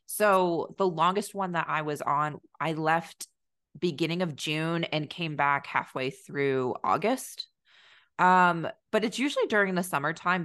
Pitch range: 150-185 Hz